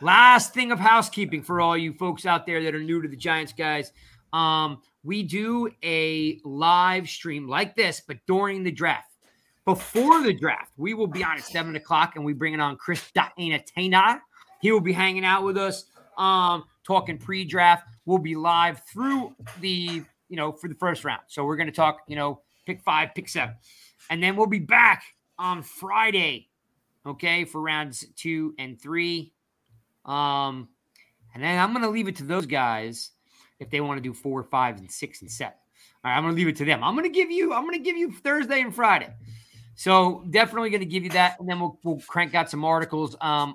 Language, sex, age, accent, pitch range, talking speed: English, male, 30-49, American, 150-190 Hz, 210 wpm